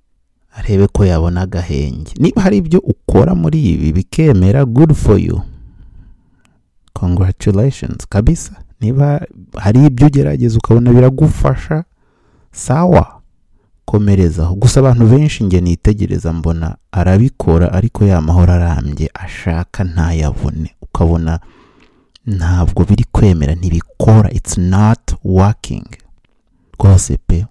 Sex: male